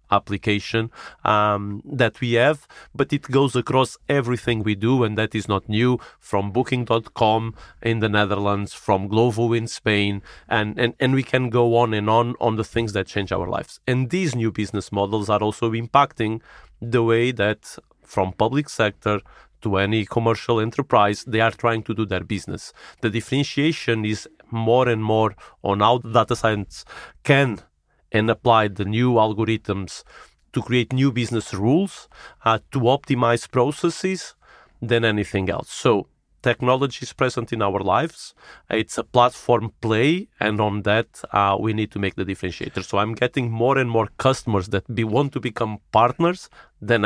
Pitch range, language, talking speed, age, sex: 105-125 Hz, Swedish, 165 wpm, 40-59, male